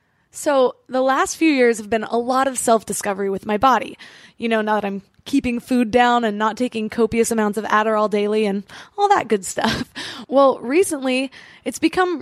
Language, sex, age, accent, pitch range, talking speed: English, female, 20-39, American, 220-275 Hz, 190 wpm